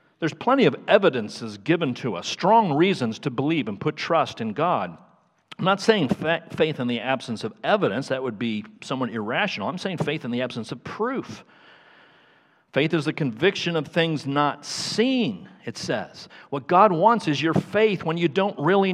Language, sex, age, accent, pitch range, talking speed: English, male, 50-69, American, 130-180 Hz, 185 wpm